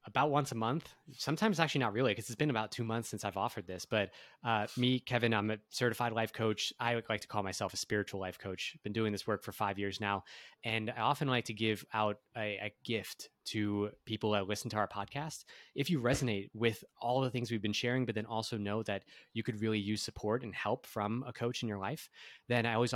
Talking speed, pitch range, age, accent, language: 240 wpm, 105-120 Hz, 20-39, American, English